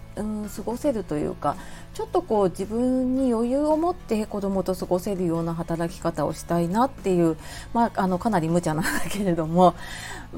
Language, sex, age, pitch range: Japanese, female, 40-59, 165-215 Hz